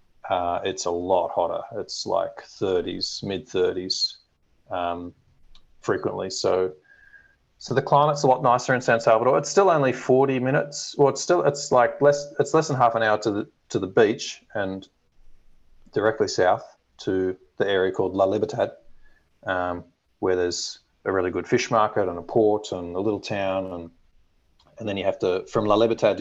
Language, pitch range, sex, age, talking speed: English, 95-130 Hz, male, 30-49, 175 wpm